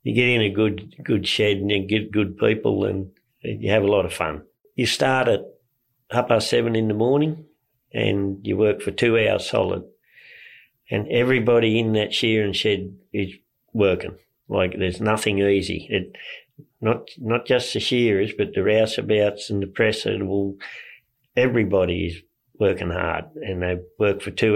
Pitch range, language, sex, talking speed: 95-115 Hz, English, male, 175 wpm